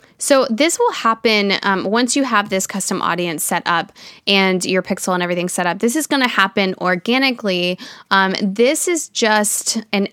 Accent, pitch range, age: American, 185-215 Hz, 10-29